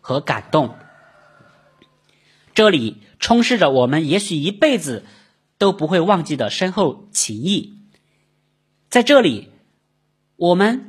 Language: Chinese